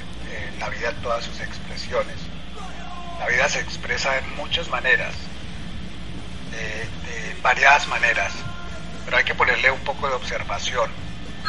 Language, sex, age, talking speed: Spanish, male, 40-59, 135 wpm